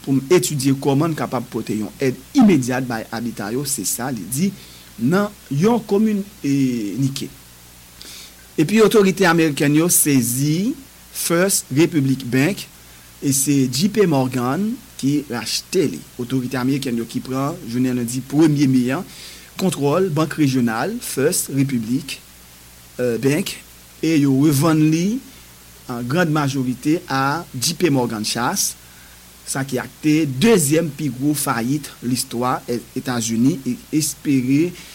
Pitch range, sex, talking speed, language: 115-155 Hz, male, 125 wpm, English